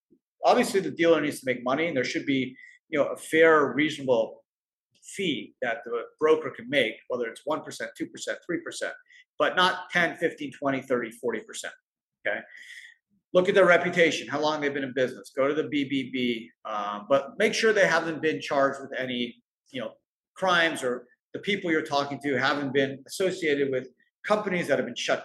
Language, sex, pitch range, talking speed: English, male, 135-195 Hz, 185 wpm